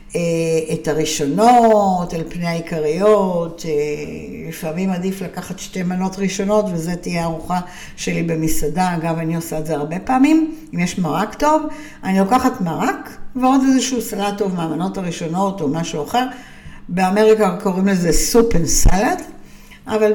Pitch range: 165-220 Hz